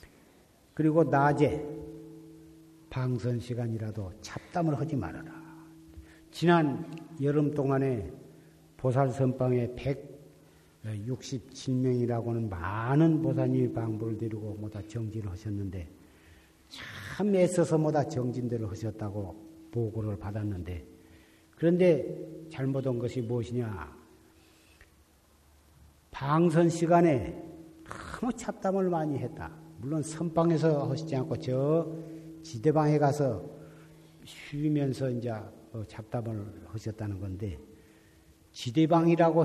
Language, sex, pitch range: Korean, male, 105-160 Hz